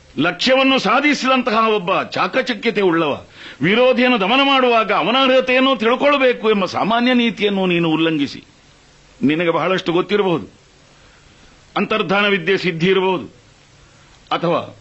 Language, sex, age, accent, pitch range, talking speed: Kannada, male, 60-79, native, 165-245 Hz, 95 wpm